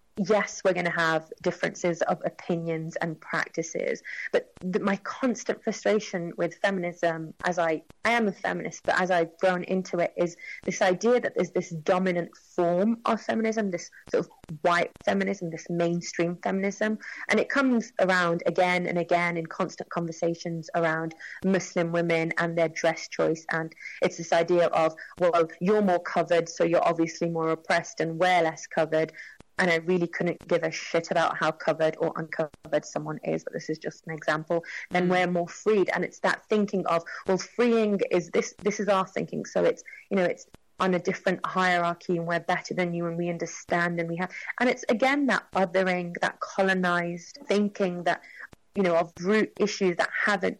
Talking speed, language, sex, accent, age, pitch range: 185 wpm, English, female, British, 30-49, 170-195 Hz